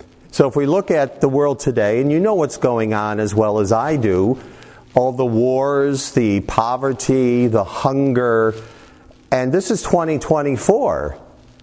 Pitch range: 110-140 Hz